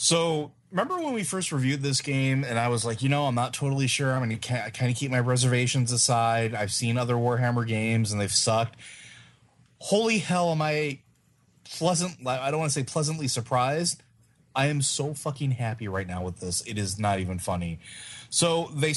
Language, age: English, 30-49